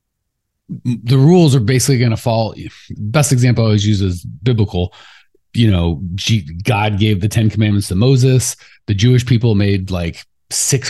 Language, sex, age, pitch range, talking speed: English, male, 30-49, 105-140 Hz, 165 wpm